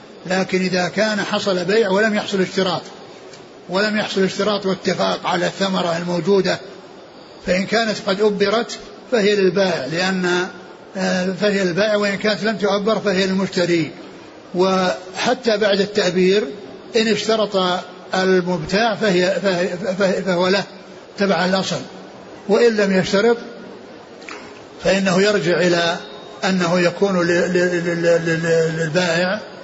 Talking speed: 105 wpm